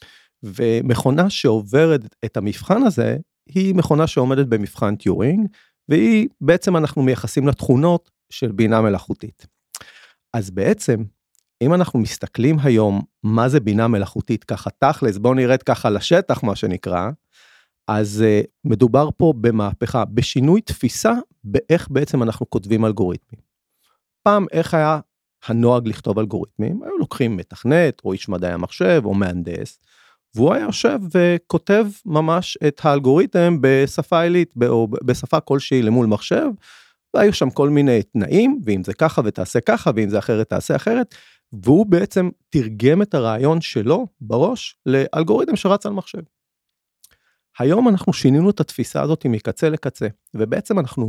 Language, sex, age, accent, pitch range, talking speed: Hebrew, male, 40-59, native, 110-160 Hz, 130 wpm